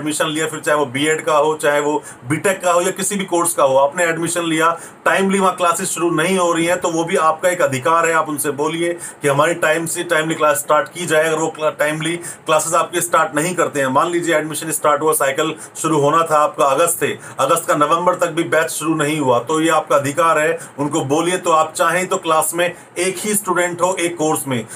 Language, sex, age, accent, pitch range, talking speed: Hindi, male, 40-59, native, 155-175 Hz, 130 wpm